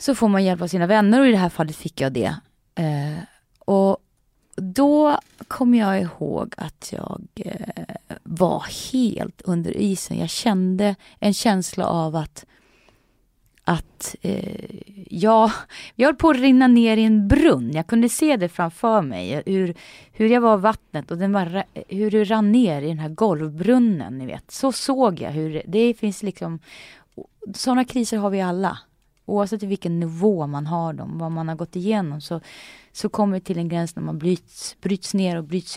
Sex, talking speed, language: female, 175 wpm, Swedish